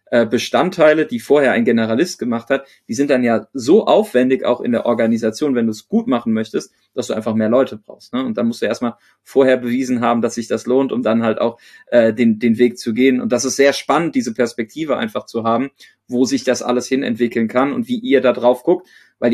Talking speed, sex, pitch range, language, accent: 235 wpm, male, 115-135 Hz, German, German